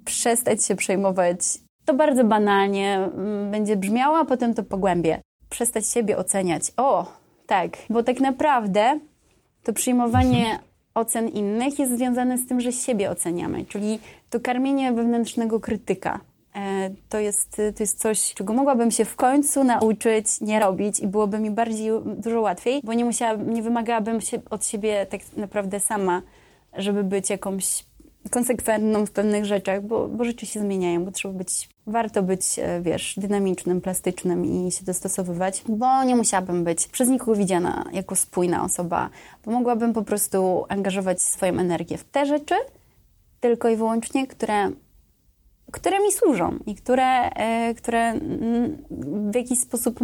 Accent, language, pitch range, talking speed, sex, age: native, Polish, 195-240 Hz, 145 wpm, female, 20-39